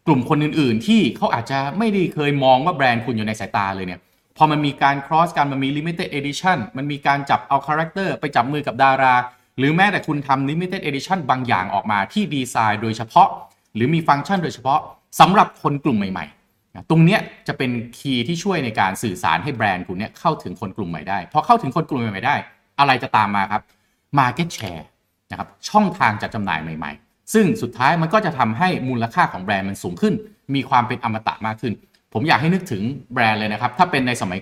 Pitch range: 110-155 Hz